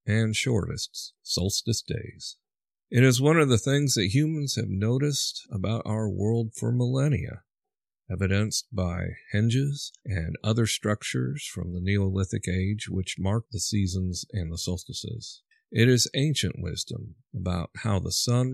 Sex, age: male, 50-69